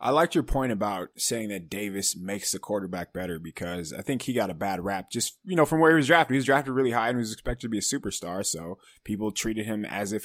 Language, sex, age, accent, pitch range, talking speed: English, male, 20-39, American, 105-135 Hz, 275 wpm